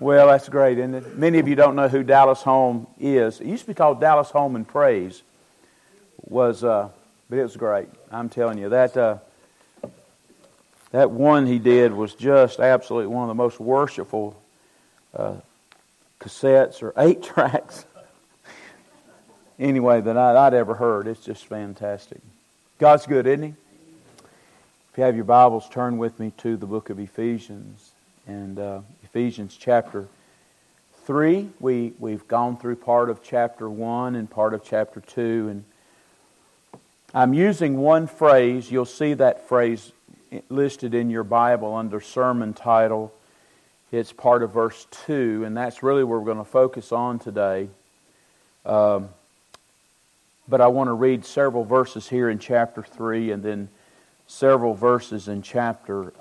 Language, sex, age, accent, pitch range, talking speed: English, male, 50-69, American, 110-130 Hz, 155 wpm